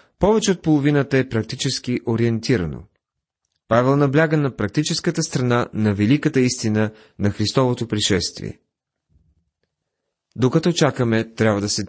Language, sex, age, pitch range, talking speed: Bulgarian, male, 30-49, 105-140 Hz, 110 wpm